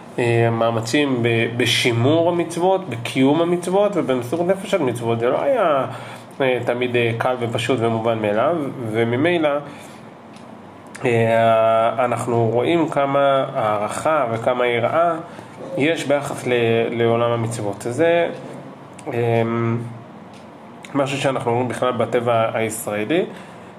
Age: 30-49